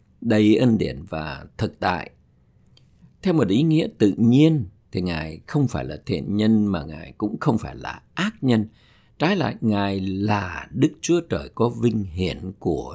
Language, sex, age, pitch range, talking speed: Vietnamese, male, 50-69, 95-120 Hz, 175 wpm